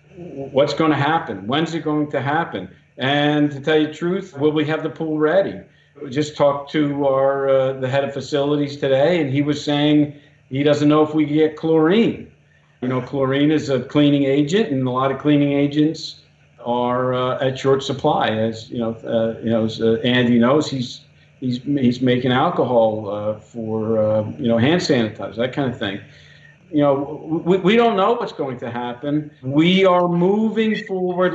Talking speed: 195 wpm